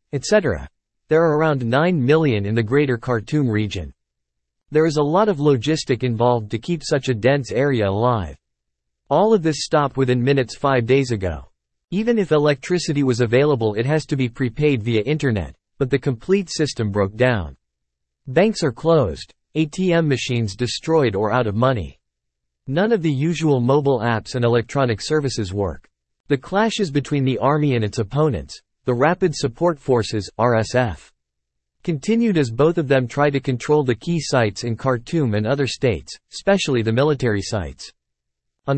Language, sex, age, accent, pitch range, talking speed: English, male, 50-69, American, 110-150 Hz, 165 wpm